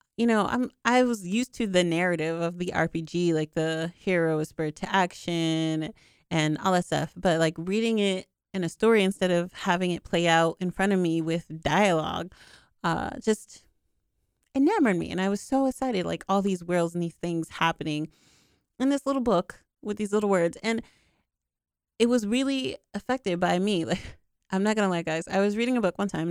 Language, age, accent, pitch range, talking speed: English, 30-49, American, 165-200 Hz, 200 wpm